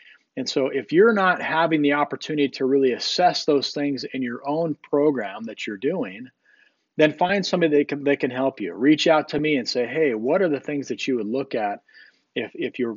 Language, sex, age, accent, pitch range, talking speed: English, male, 40-59, American, 120-155 Hz, 225 wpm